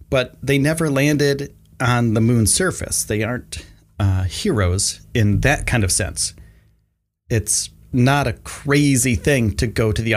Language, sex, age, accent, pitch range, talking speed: English, male, 30-49, American, 100-125 Hz, 155 wpm